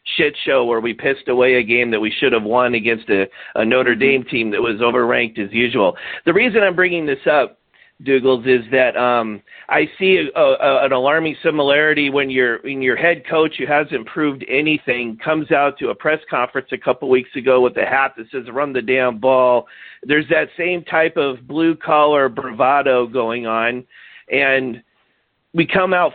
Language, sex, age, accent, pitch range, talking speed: English, male, 40-59, American, 130-165 Hz, 185 wpm